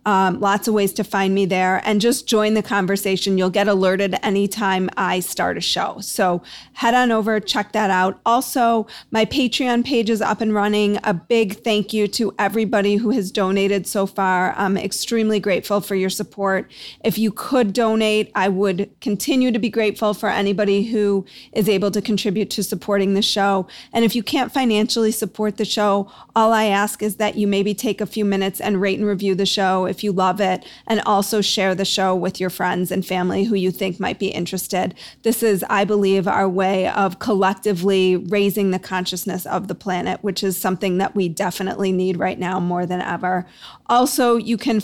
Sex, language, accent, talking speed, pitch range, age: female, English, American, 195 wpm, 190-220 Hz, 40-59